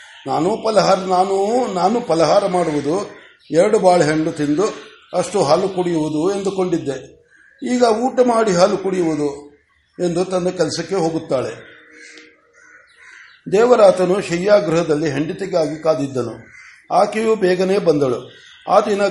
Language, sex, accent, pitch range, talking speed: Kannada, male, native, 165-205 Hz, 95 wpm